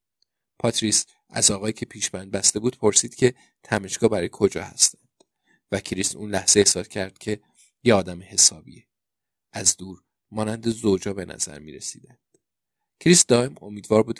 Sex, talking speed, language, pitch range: male, 150 wpm, Persian, 95-110 Hz